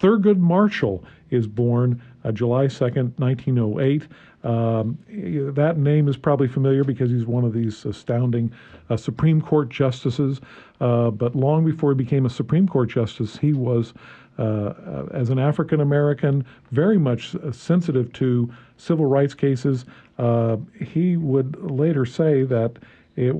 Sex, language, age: male, English, 50-69